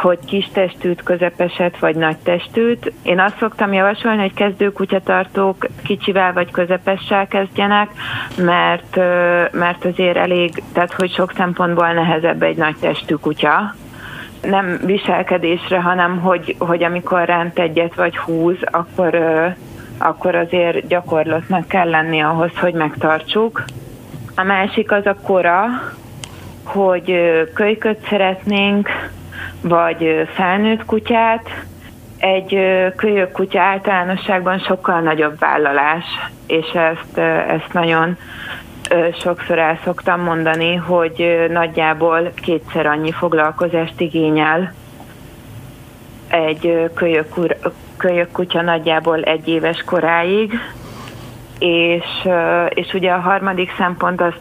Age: 30-49